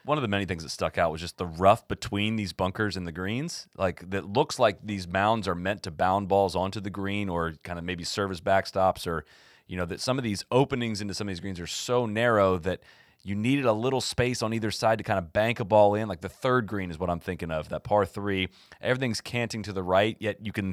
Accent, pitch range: American, 95-115 Hz